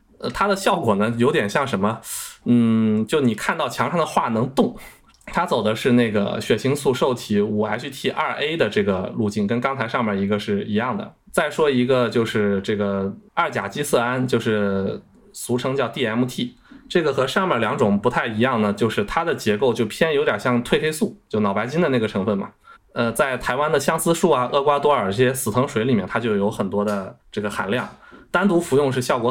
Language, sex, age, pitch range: Chinese, male, 20-39, 105-130 Hz